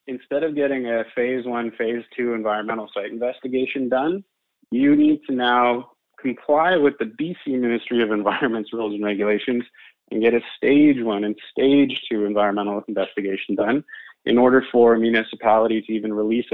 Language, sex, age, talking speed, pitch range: English, male, 20-39, 165 wpm, 110-130 Hz